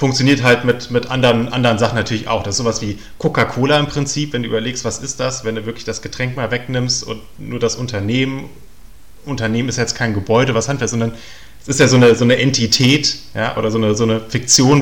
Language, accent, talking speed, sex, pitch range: German, German, 225 wpm, male, 110-130 Hz